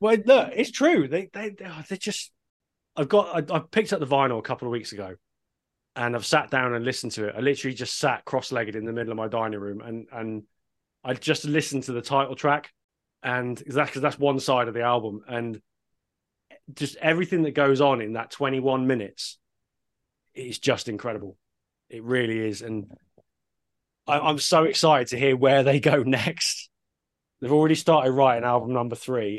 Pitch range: 115-145 Hz